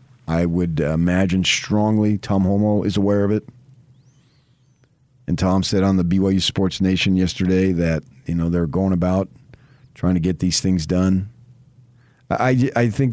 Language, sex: English, male